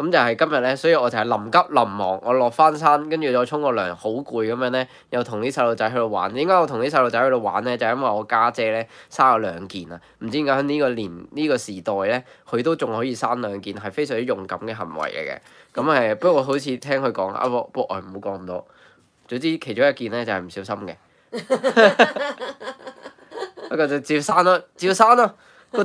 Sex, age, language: male, 10-29, Chinese